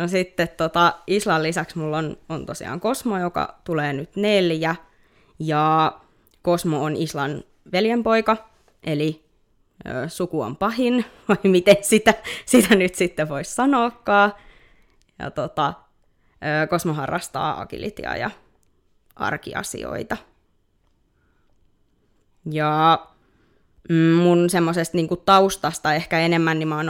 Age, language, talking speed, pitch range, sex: 20-39, Finnish, 110 wpm, 155-185 Hz, female